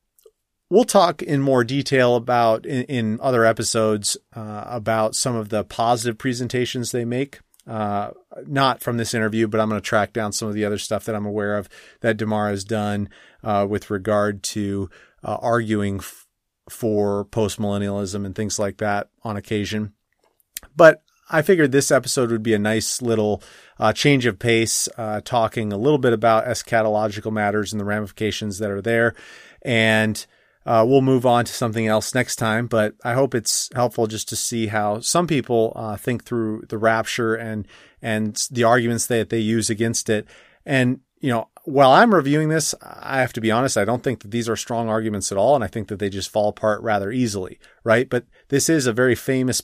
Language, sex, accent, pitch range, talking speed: English, male, American, 105-120 Hz, 195 wpm